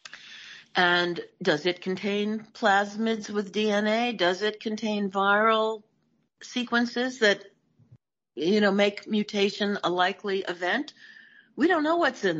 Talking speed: 120 wpm